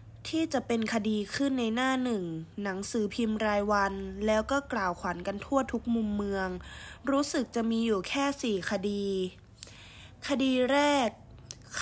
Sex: female